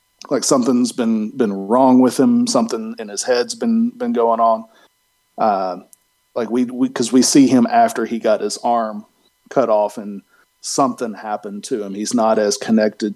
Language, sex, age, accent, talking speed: English, male, 40-59, American, 180 wpm